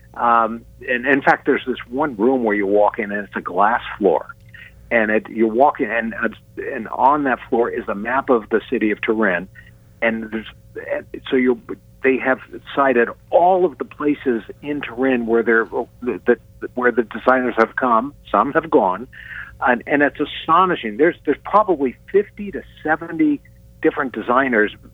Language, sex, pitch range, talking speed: English, male, 110-130 Hz, 170 wpm